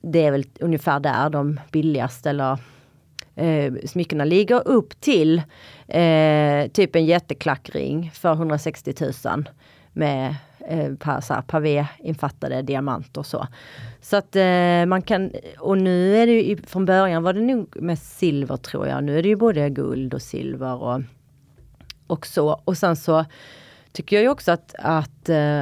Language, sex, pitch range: Swedish, female, 145-175 Hz